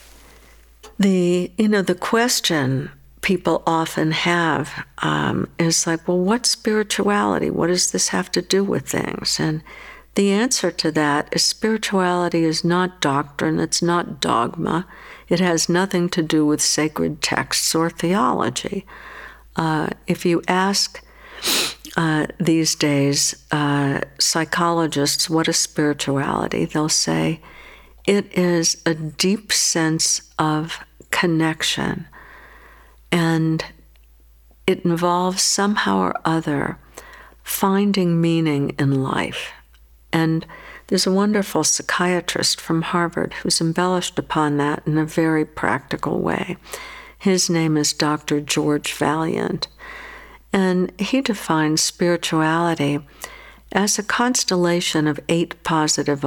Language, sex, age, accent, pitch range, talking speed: English, female, 60-79, American, 155-185 Hz, 115 wpm